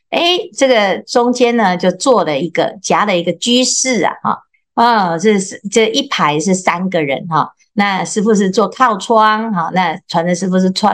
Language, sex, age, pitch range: Chinese, female, 50-69, 180-250 Hz